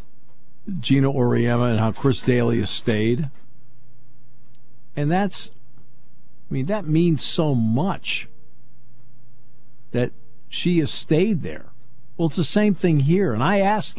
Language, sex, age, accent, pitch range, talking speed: English, male, 50-69, American, 120-150 Hz, 120 wpm